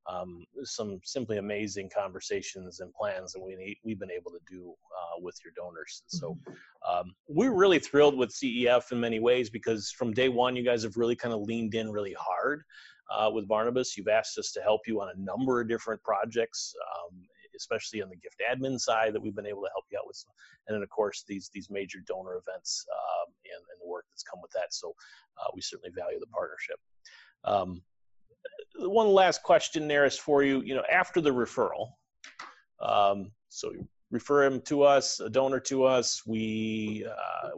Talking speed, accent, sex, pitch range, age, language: 195 wpm, American, male, 105-140 Hz, 30-49, English